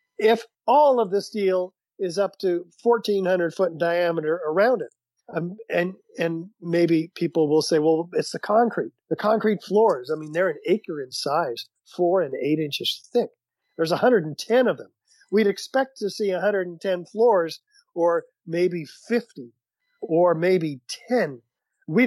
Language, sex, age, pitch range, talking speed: English, male, 50-69, 165-225 Hz, 155 wpm